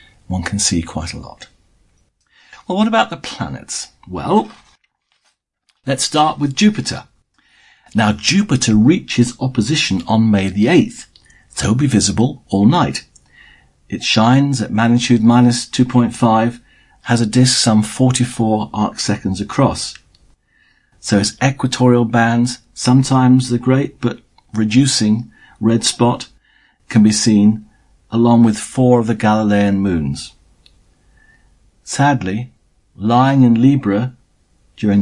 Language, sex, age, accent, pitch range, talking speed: English, male, 50-69, British, 100-125 Hz, 120 wpm